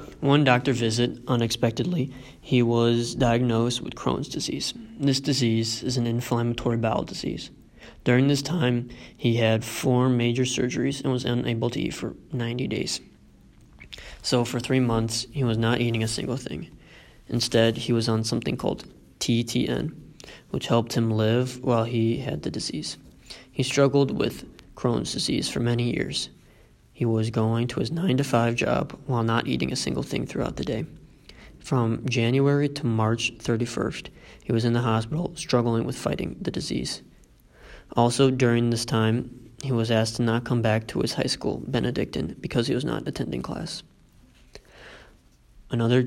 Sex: male